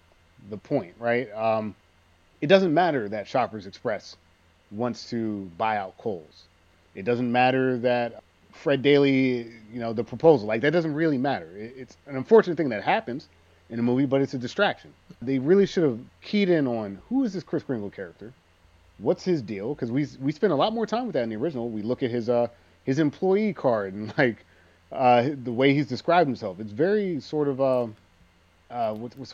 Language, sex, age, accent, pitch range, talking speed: English, male, 30-49, American, 95-150 Hz, 195 wpm